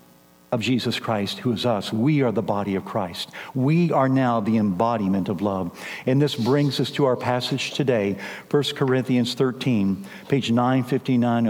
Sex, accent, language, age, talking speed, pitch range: male, American, English, 60-79, 165 wpm, 100-160 Hz